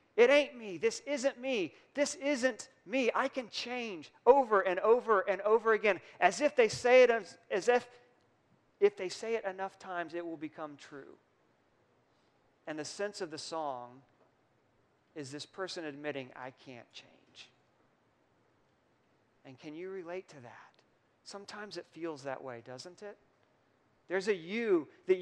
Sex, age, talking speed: male, 40-59, 155 wpm